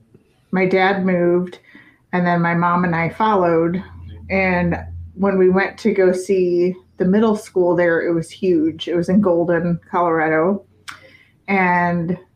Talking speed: 145 wpm